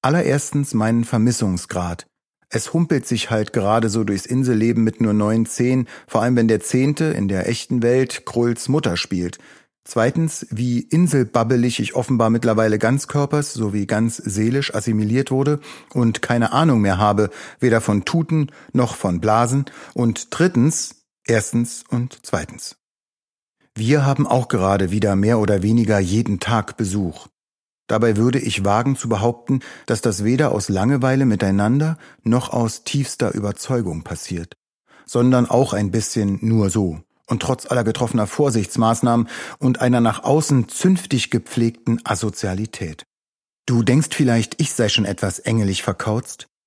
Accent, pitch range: German, 105-130 Hz